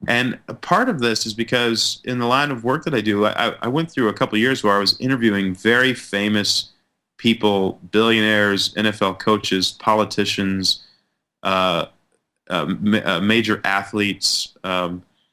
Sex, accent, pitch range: male, American, 95-115 Hz